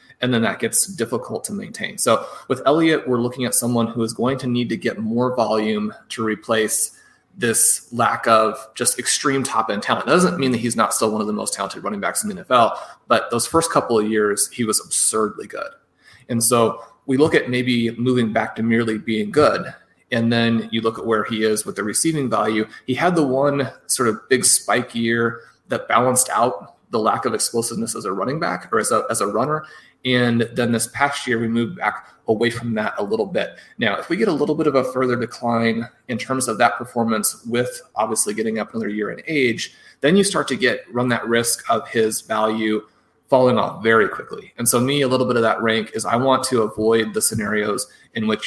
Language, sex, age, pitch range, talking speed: English, male, 30-49, 110-130 Hz, 220 wpm